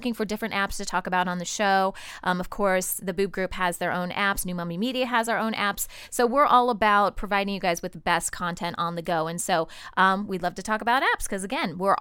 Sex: female